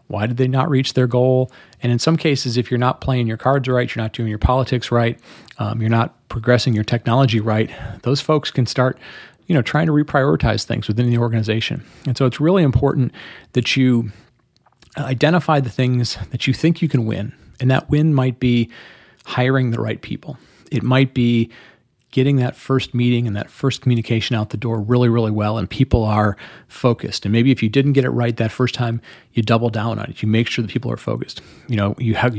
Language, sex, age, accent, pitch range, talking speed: English, male, 40-59, American, 110-130 Hz, 215 wpm